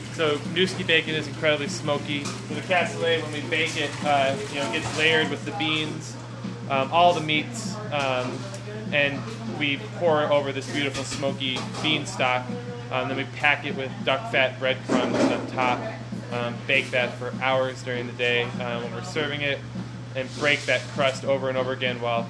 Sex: male